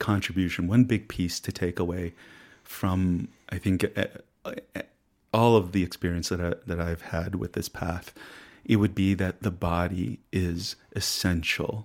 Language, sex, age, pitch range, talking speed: English, male, 30-49, 90-105 Hz, 150 wpm